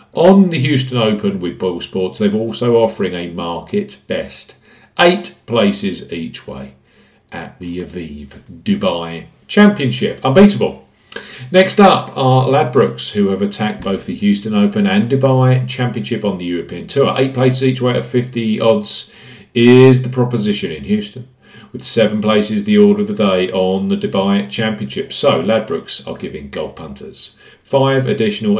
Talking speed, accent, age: 155 wpm, British, 50-69